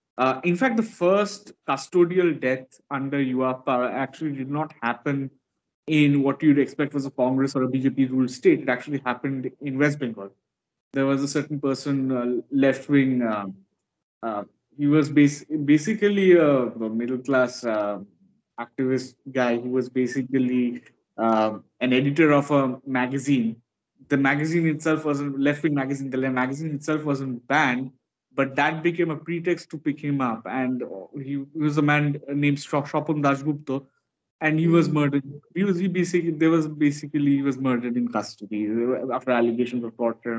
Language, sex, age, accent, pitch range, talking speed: English, male, 20-39, Indian, 125-150 Hz, 155 wpm